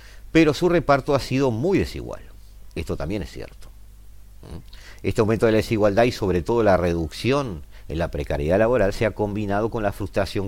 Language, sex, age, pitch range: Spanish, male, 50-69, 90-115 Hz